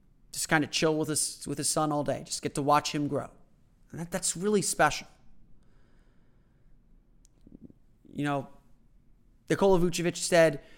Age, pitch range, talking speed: 30-49, 145-175 Hz, 150 wpm